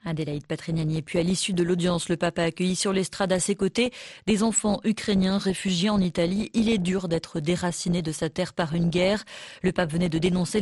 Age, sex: 30-49, female